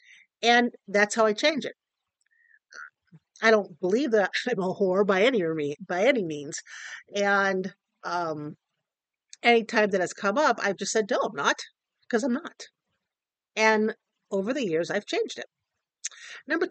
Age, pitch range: 50-69, 200-280 Hz